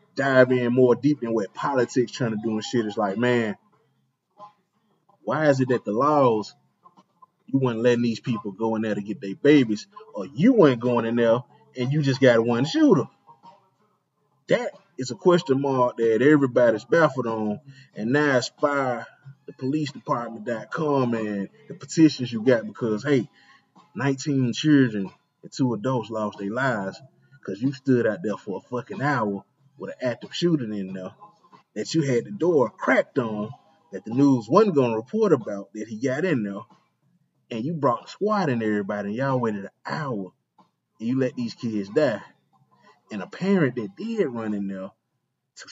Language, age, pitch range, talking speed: English, 20-39, 110-140 Hz, 175 wpm